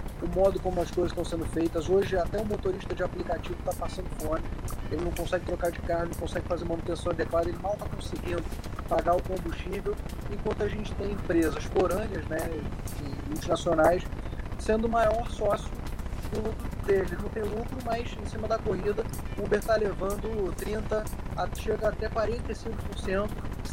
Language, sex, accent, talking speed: Portuguese, male, Brazilian, 165 wpm